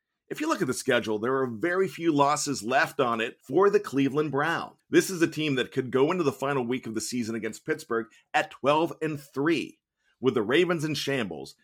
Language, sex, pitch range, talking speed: English, male, 130-180 Hz, 215 wpm